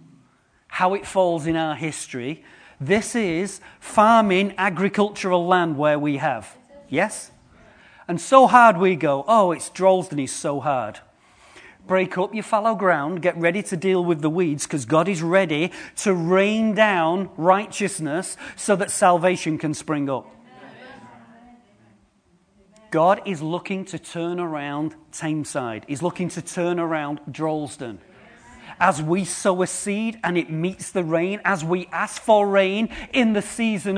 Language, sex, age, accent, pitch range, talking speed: English, male, 40-59, British, 175-230 Hz, 145 wpm